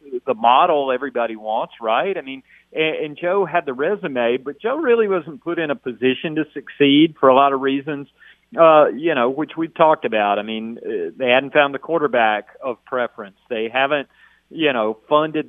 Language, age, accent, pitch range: English, 40-59, American, 130-155 Hz